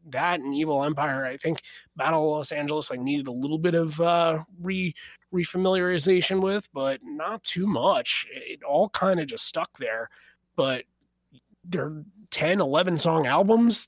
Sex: male